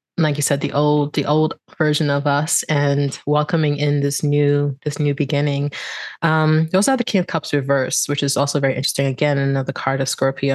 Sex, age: female, 20-39